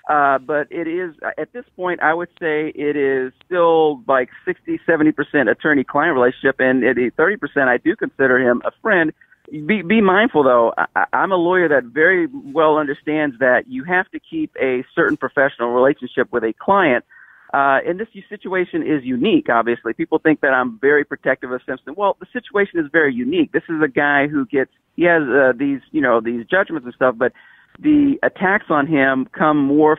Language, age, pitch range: English, 40-59, 125-160 Hz